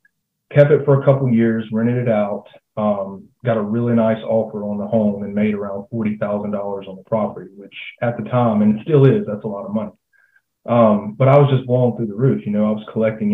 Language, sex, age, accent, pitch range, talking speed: English, male, 30-49, American, 105-125 Hz, 240 wpm